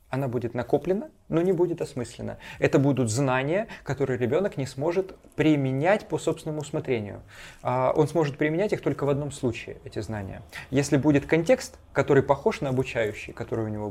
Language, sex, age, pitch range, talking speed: Russian, male, 20-39, 115-150 Hz, 165 wpm